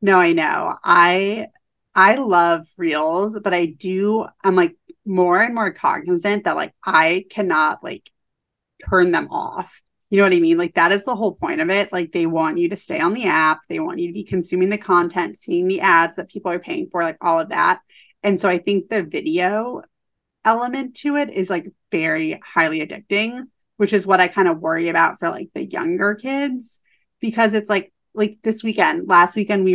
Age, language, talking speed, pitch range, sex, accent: 30-49, English, 205 wpm, 175-235 Hz, female, American